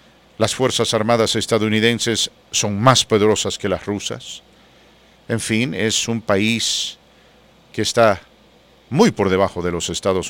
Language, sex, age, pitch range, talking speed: English, male, 50-69, 95-115 Hz, 135 wpm